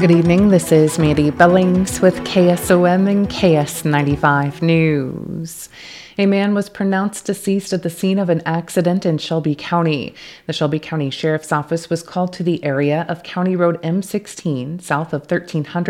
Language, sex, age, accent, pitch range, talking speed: English, female, 30-49, American, 155-175 Hz, 160 wpm